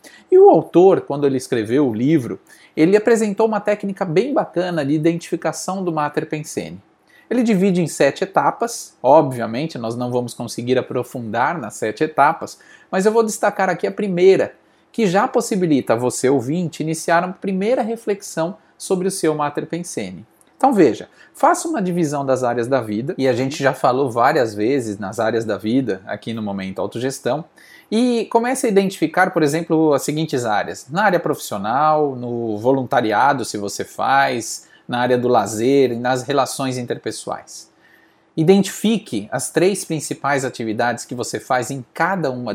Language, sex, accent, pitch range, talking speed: Portuguese, male, Brazilian, 125-190 Hz, 160 wpm